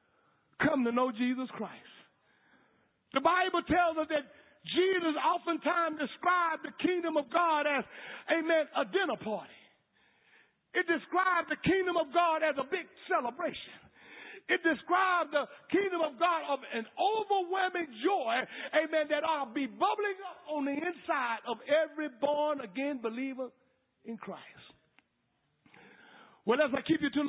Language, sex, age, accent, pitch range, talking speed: English, male, 50-69, American, 285-345 Hz, 140 wpm